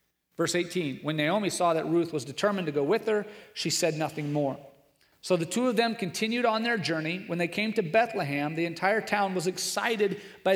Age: 40-59